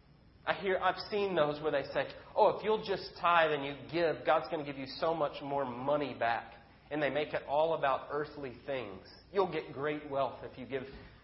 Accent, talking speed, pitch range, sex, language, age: American, 220 wpm, 125-155 Hz, male, English, 30-49